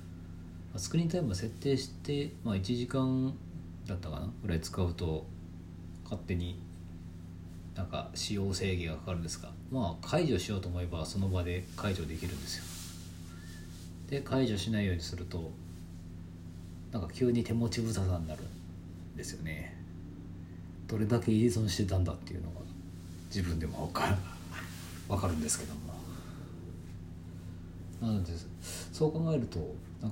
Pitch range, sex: 85-95 Hz, male